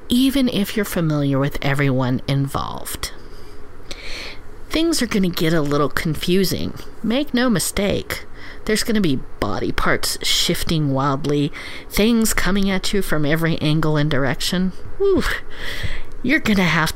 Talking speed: 140 wpm